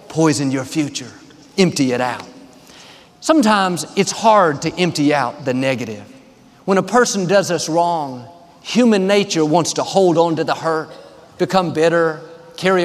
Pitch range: 150-205 Hz